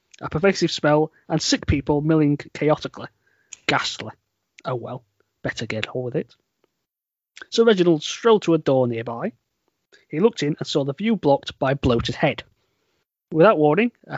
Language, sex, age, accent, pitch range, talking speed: English, male, 30-49, British, 135-180 Hz, 160 wpm